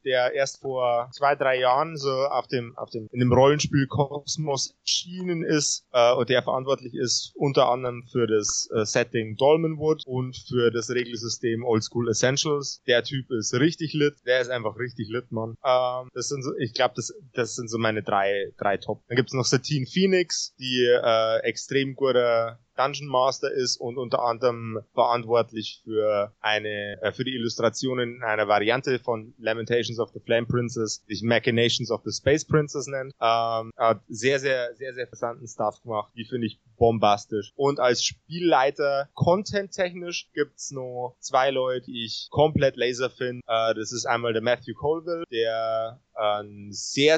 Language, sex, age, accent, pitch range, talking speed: German, male, 20-39, German, 115-135 Hz, 175 wpm